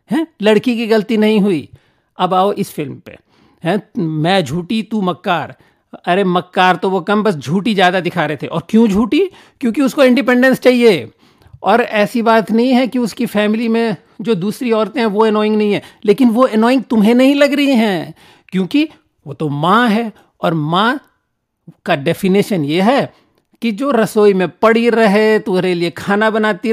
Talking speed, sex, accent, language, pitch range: 115 wpm, male, Indian, English, 180-240 Hz